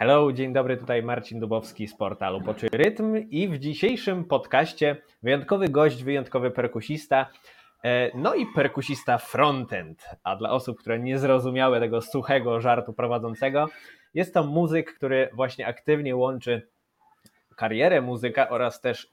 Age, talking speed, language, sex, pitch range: 20-39, 135 wpm, Polish, male, 115-145 Hz